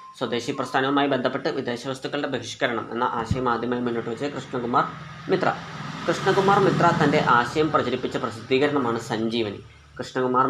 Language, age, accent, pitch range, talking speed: Malayalam, 20-39, native, 125-155 Hz, 115 wpm